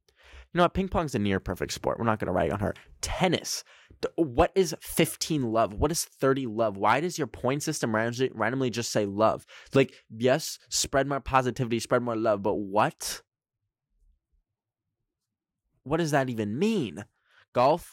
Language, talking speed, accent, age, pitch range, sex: English, 165 wpm, American, 10-29, 105-145 Hz, male